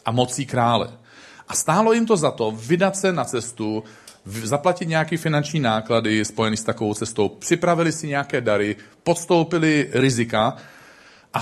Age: 40-59